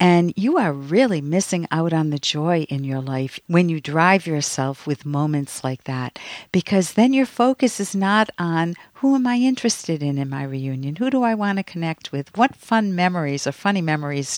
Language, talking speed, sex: English, 200 wpm, female